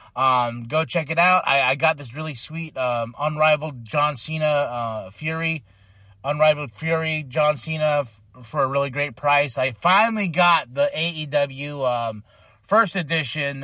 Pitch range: 120-160 Hz